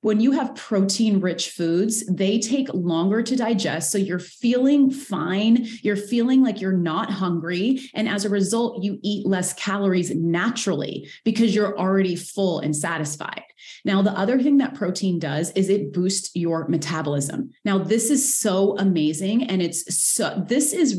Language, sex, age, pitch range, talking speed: English, female, 30-49, 175-225 Hz, 165 wpm